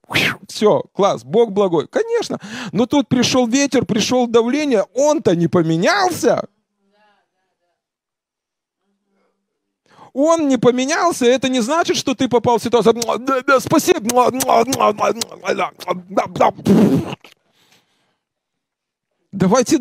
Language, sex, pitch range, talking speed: Russian, male, 210-290 Hz, 80 wpm